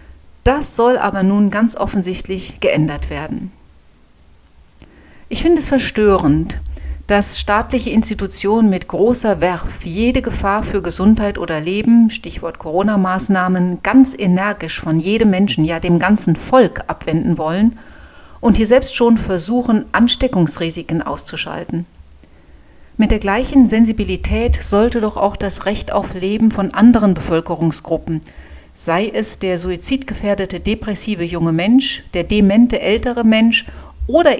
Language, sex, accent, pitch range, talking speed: German, female, German, 165-220 Hz, 120 wpm